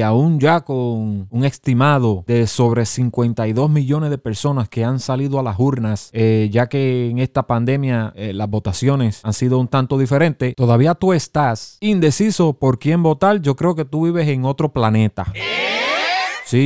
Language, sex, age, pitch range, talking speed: Spanish, male, 30-49, 120-160 Hz, 175 wpm